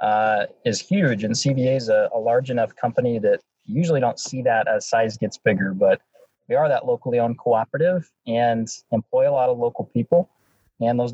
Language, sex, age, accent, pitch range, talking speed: English, male, 20-39, American, 125-170 Hz, 200 wpm